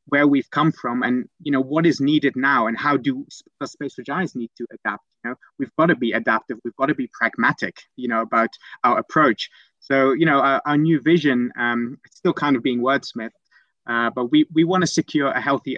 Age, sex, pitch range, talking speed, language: 30-49, male, 120-145 Hz, 225 wpm, English